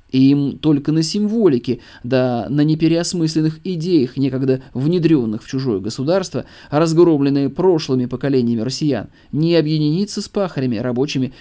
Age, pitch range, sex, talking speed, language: 20-39, 125-165 Hz, male, 120 wpm, Russian